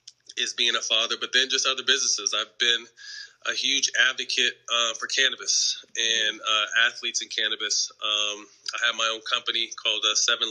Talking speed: 175 wpm